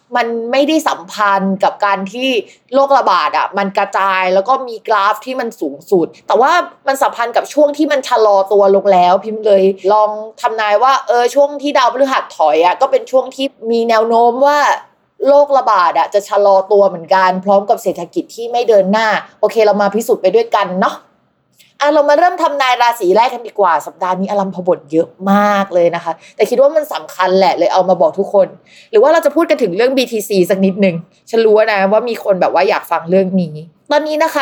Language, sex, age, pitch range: Thai, female, 20-39, 195-275 Hz